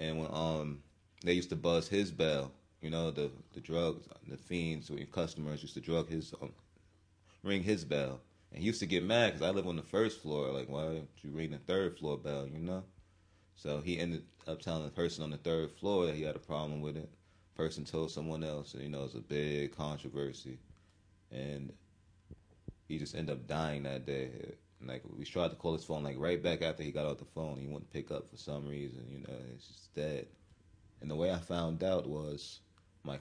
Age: 30-49